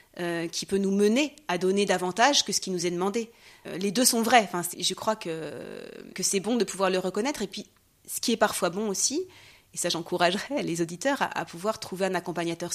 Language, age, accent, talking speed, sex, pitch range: French, 30-49, French, 230 wpm, female, 175-210 Hz